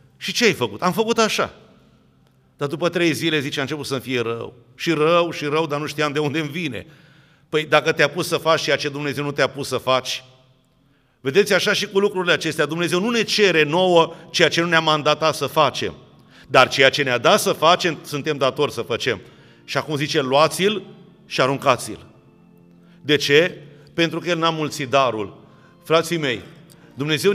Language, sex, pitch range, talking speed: Romanian, male, 145-180 Hz, 190 wpm